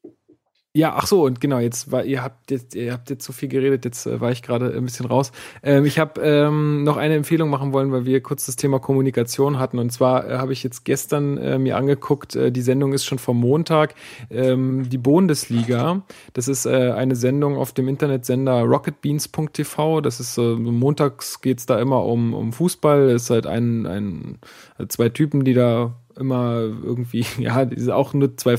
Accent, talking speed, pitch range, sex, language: German, 205 wpm, 120-140 Hz, male, German